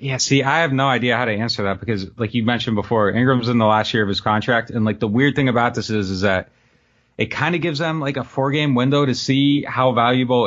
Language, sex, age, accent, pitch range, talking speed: English, male, 30-49, American, 105-125 Hz, 265 wpm